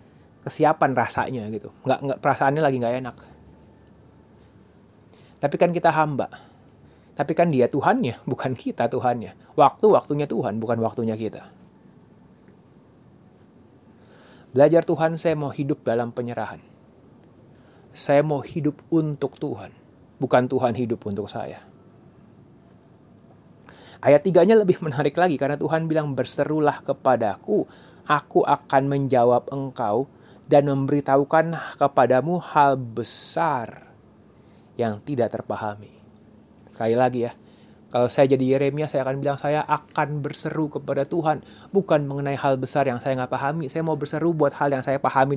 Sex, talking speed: male, 125 wpm